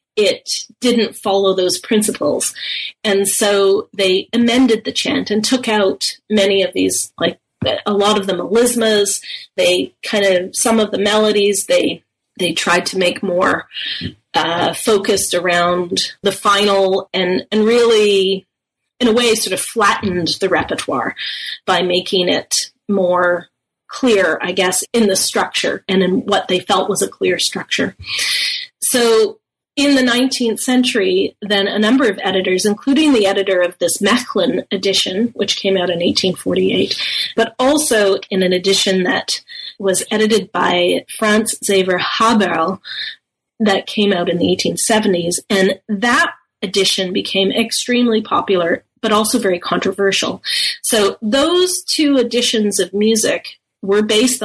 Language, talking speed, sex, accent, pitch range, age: English, 140 wpm, female, American, 190-235 Hz, 30-49